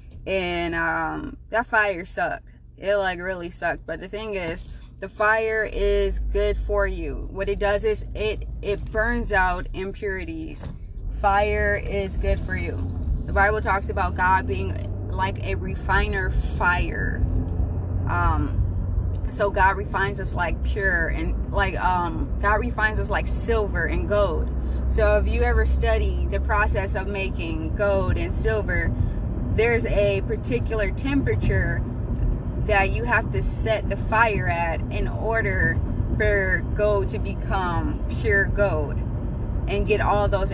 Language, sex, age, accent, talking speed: English, female, 20-39, American, 140 wpm